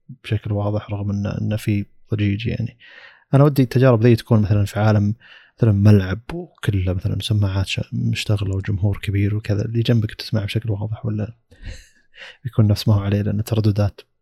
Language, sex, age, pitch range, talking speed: Arabic, male, 20-39, 105-120 Hz, 160 wpm